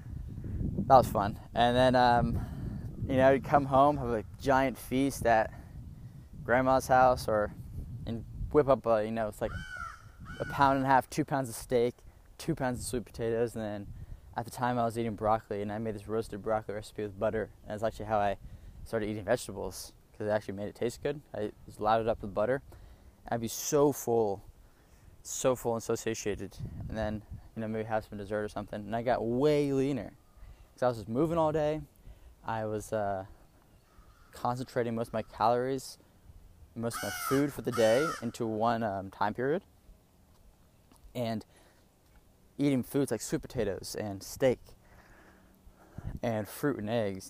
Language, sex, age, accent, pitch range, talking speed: English, male, 10-29, American, 105-125 Hz, 185 wpm